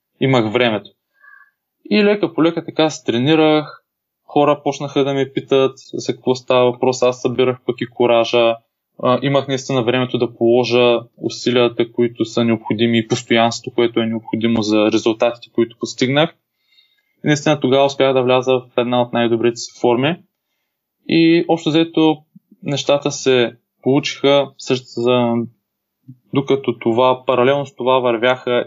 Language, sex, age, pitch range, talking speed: Bulgarian, male, 20-39, 120-135 Hz, 135 wpm